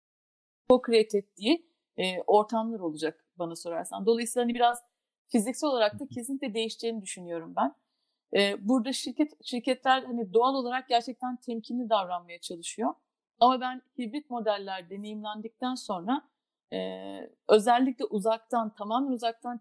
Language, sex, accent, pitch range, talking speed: Turkish, female, native, 210-250 Hz, 115 wpm